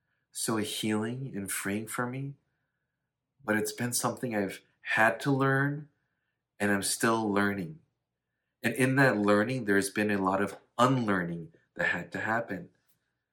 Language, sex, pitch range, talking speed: English, male, 100-135 Hz, 145 wpm